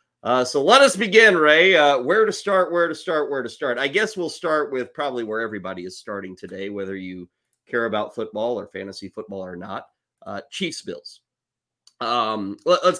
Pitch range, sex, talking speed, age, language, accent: 110-170 Hz, male, 195 wpm, 30-49, English, American